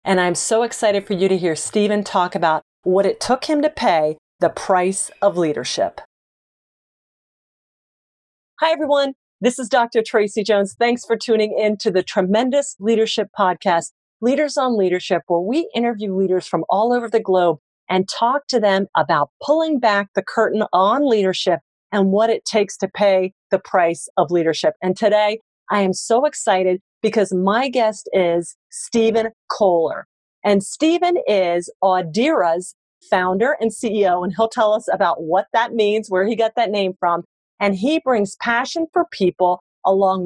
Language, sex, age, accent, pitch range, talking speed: English, female, 40-59, American, 185-235 Hz, 165 wpm